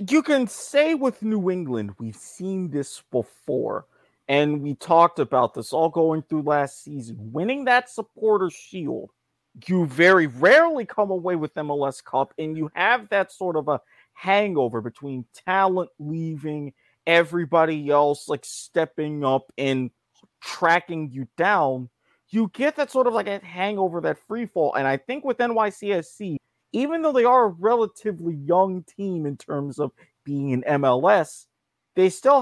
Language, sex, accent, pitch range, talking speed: English, male, American, 145-195 Hz, 155 wpm